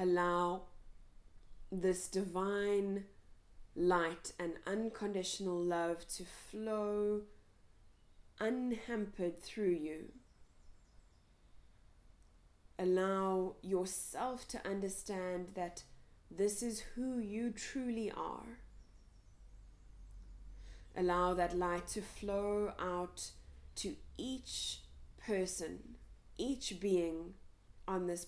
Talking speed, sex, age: 75 wpm, female, 20-39